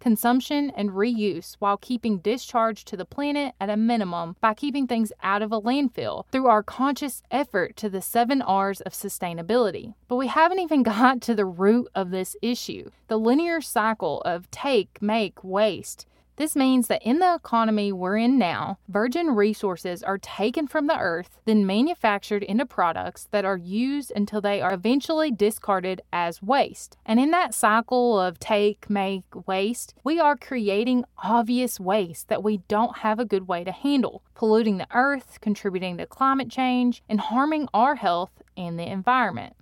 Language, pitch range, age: English, 195-255 Hz, 20-39